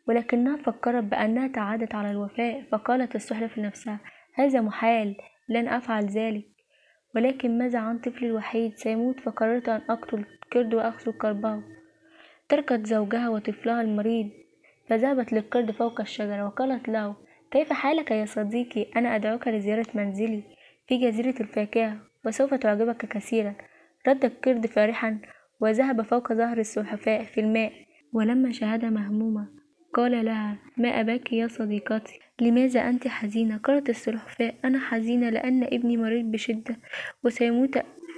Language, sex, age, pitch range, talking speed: Arabic, female, 10-29, 220-255 Hz, 125 wpm